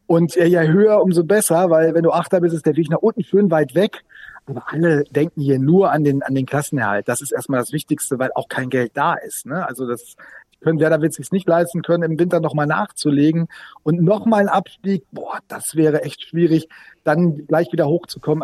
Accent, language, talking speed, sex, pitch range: German, German, 230 wpm, male, 150-190 Hz